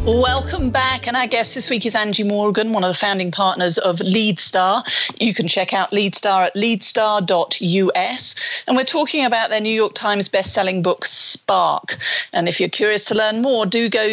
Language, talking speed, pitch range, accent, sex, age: English, 185 wpm, 185-235 Hz, British, female, 40-59